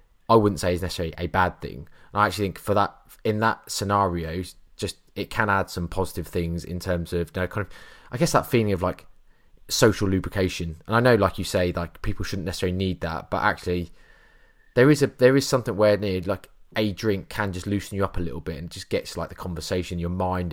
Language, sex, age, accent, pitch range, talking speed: English, male, 20-39, British, 85-100 Hz, 235 wpm